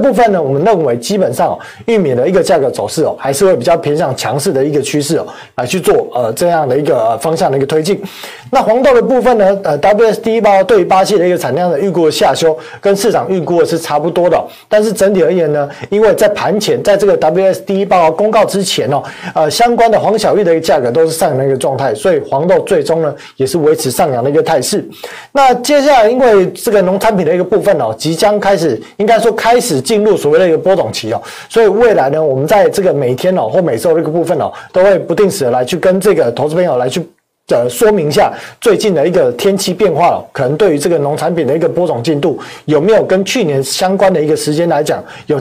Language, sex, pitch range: Chinese, male, 155-215 Hz